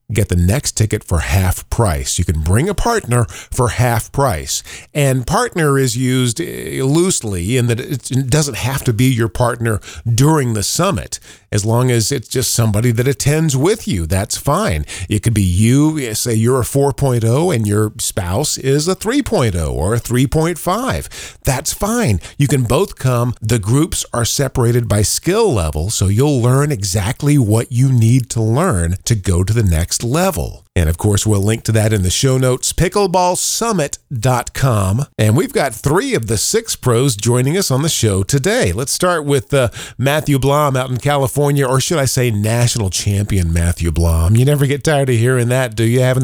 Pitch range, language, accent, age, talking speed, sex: 105-140 Hz, English, American, 40-59, 185 wpm, male